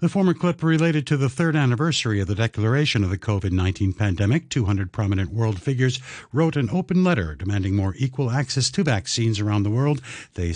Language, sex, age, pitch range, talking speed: English, male, 60-79, 105-145 Hz, 190 wpm